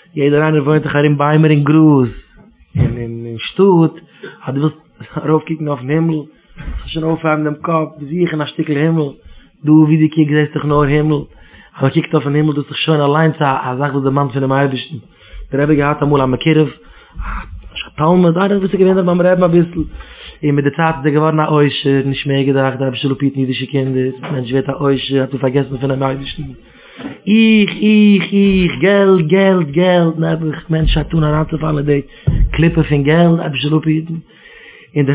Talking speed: 165 wpm